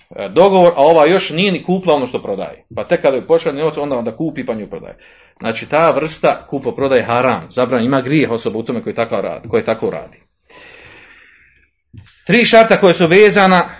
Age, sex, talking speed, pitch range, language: 40-59, male, 190 wpm, 130-200 Hz, Croatian